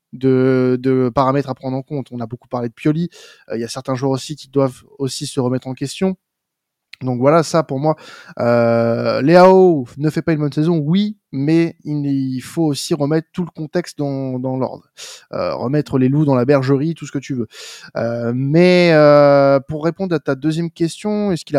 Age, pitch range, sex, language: 20-39, 130-165 Hz, male, French